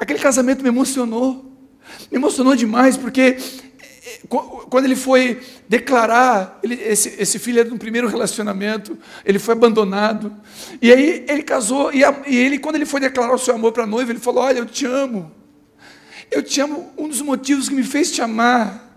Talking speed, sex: 185 wpm, male